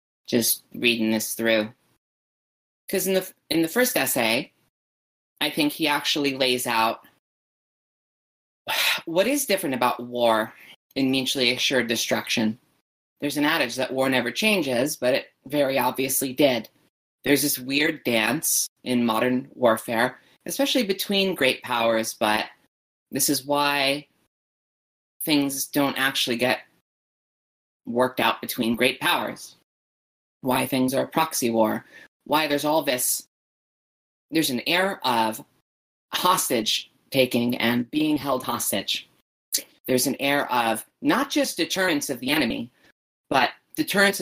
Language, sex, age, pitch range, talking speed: English, female, 30-49, 120-165 Hz, 130 wpm